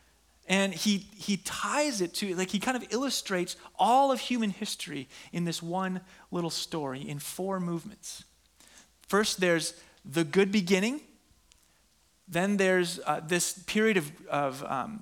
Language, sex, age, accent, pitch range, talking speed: English, male, 30-49, American, 145-200 Hz, 135 wpm